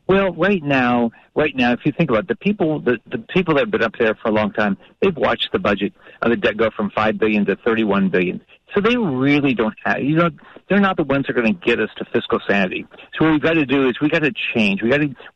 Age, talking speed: 50-69, 280 wpm